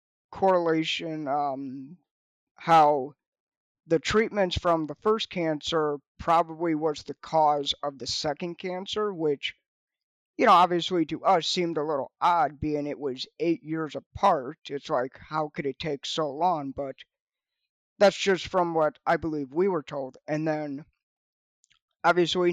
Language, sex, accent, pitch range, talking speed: English, male, American, 150-175 Hz, 145 wpm